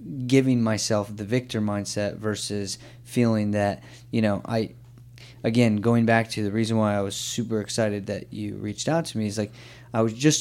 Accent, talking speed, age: American, 190 wpm, 20-39